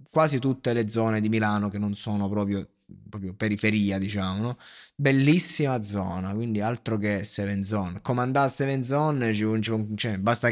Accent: native